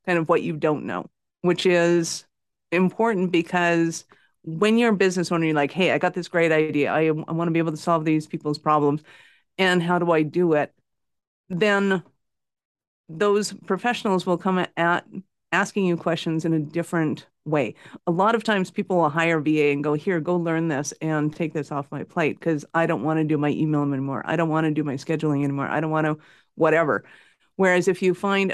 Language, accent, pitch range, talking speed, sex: English, American, 155-180 Hz, 210 wpm, female